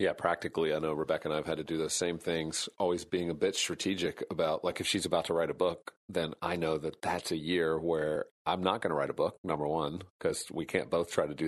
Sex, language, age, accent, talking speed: male, English, 40-59, American, 270 wpm